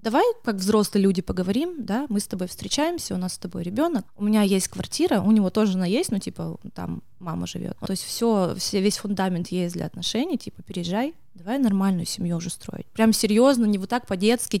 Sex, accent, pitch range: female, native, 195-250 Hz